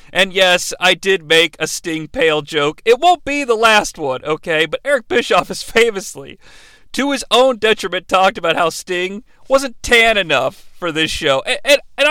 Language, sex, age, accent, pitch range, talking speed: English, male, 40-59, American, 160-240 Hz, 185 wpm